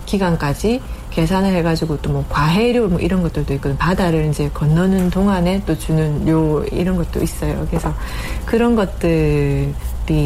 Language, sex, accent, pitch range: Korean, female, native, 155-200 Hz